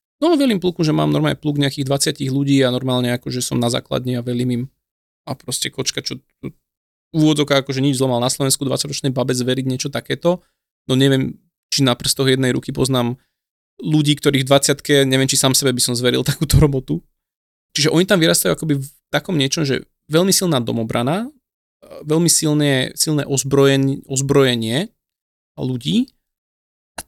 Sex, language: male, Slovak